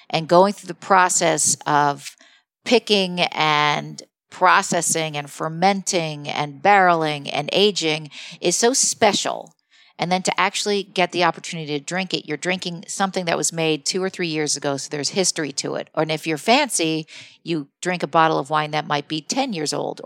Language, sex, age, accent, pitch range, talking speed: English, female, 50-69, American, 150-190 Hz, 180 wpm